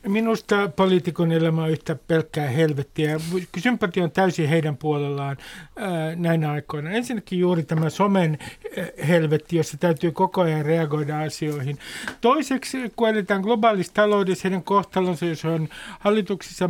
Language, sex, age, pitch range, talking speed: Finnish, male, 60-79, 155-195 Hz, 125 wpm